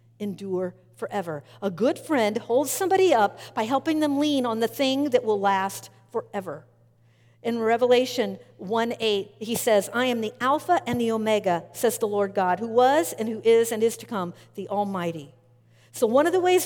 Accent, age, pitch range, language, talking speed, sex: American, 50-69, 185-275 Hz, English, 185 wpm, female